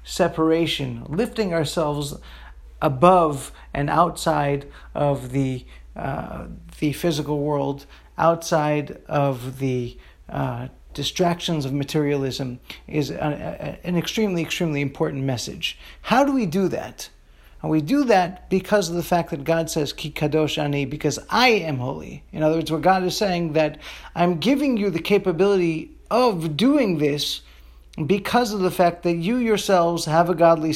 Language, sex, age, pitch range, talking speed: English, male, 40-59, 140-175 Hz, 150 wpm